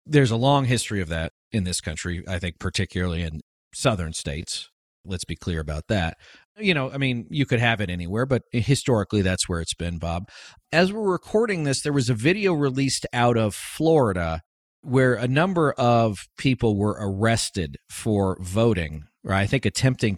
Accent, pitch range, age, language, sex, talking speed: American, 100-145 Hz, 40-59, English, male, 180 wpm